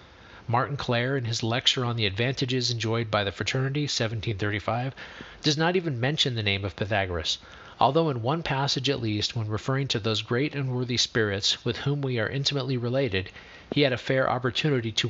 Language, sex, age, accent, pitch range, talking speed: English, male, 40-59, American, 110-140 Hz, 185 wpm